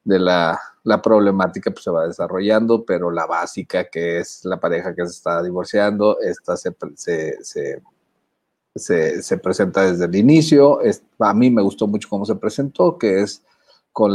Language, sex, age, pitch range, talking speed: Spanish, male, 50-69, 95-125 Hz, 170 wpm